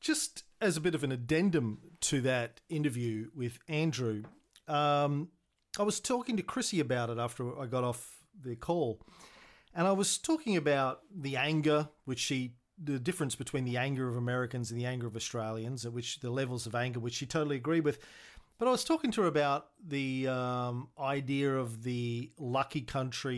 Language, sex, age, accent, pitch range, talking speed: English, male, 40-59, Australian, 125-160 Hz, 185 wpm